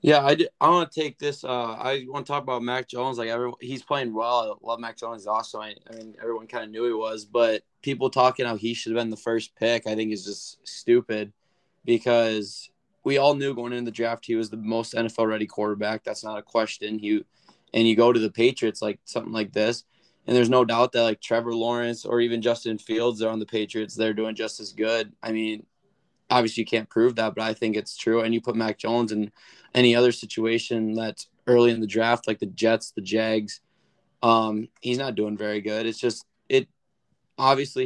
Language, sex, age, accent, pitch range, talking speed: English, male, 20-39, American, 110-120 Hz, 225 wpm